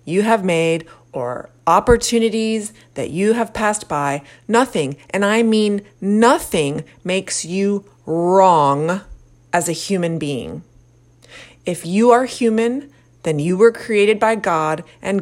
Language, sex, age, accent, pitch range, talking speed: English, female, 30-49, American, 125-210 Hz, 130 wpm